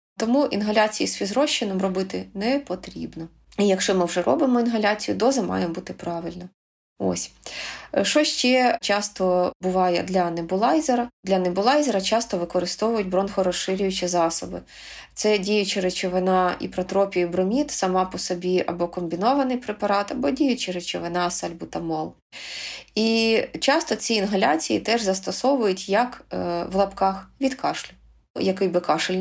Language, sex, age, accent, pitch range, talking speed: Ukrainian, female, 20-39, native, 180-230 Hz, 125 wpm